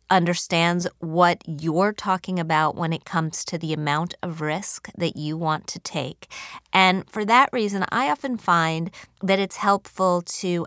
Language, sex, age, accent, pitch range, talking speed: English, female, 30-49, American, 155-190 Hz, 165 wpm